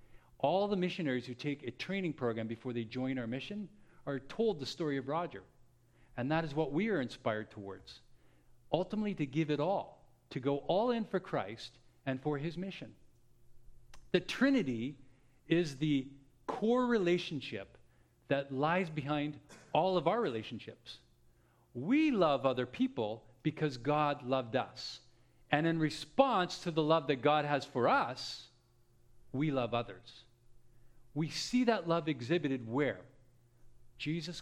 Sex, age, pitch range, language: male, 50-69, 120-165 Hz, English